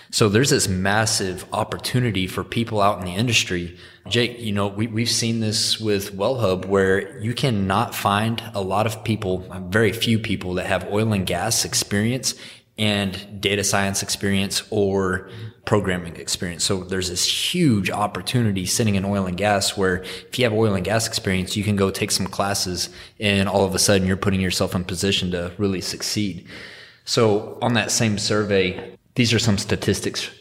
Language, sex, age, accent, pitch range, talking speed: English, male, 20-39, American, 95-110 Hz, 180 wpm